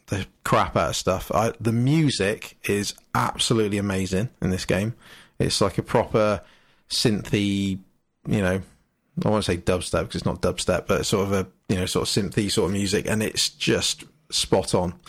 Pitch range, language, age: 95-115 Hz, English, 20-39